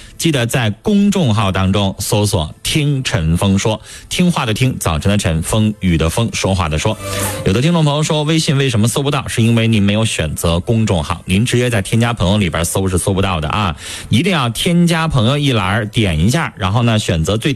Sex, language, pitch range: male, Chinese, 95-125 Hz